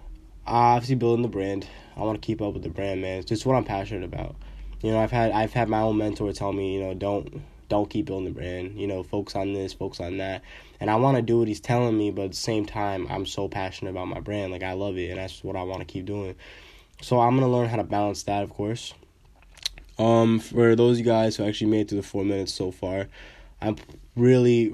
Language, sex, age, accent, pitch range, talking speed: English, male, 10-29, American, 95-115 Hz, 255 wpm